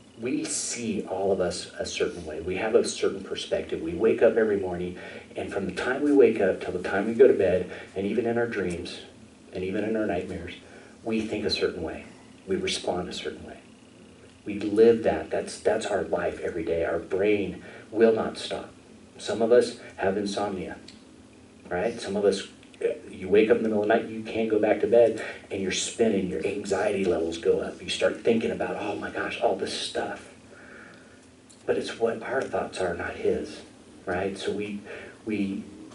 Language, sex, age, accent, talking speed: English, male, 40-59, American, 200 wpm